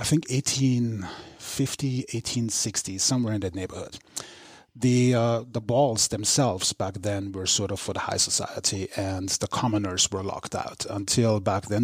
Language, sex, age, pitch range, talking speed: English, male, 30-49, 100-125 Hz, 155 wpm